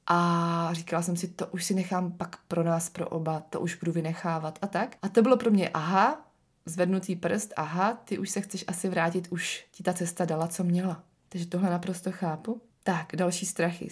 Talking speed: 205 wpm